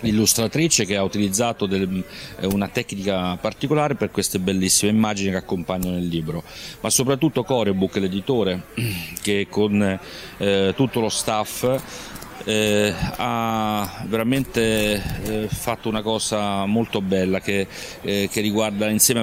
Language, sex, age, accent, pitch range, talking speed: Italian, male, 40-59, native, 100-110 Hz, 120 wpm